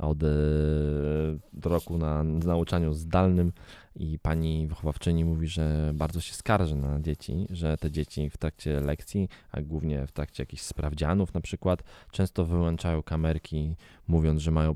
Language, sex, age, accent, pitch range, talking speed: Polish, male, 20-39, native, 80-100 Hz, 140 wpm